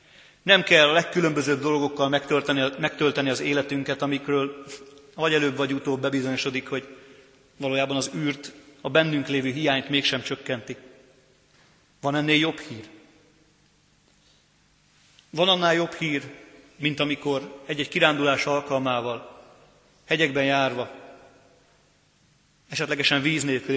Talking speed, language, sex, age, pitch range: 110 wpm, Hungarian, male, 40-59, 130-150 Hz